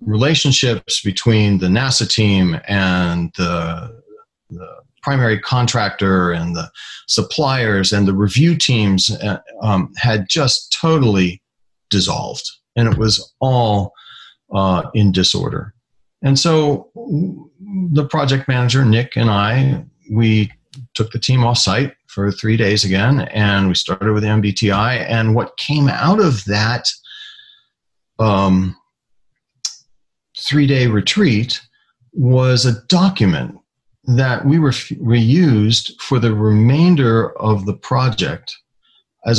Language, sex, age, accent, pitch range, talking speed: English, male, 40-59, American, 100-135 Hz, 115 wpm